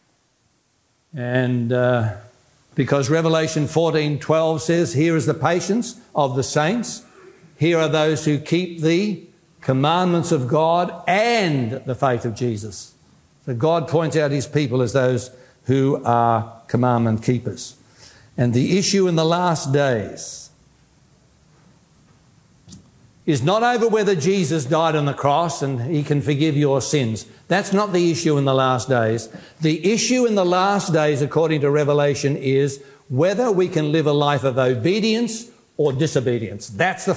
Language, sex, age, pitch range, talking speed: English, male, 60-79, 135-175 Hz, 150 wpm